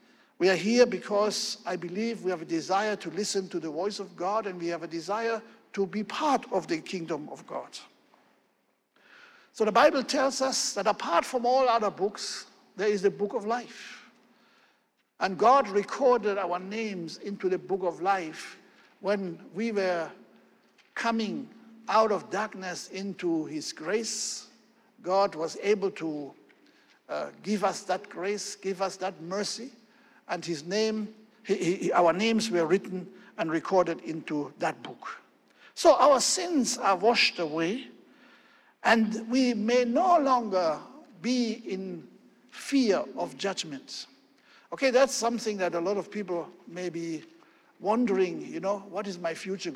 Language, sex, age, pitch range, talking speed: English, male, 60-79, 175-230 Hz, 150 wpm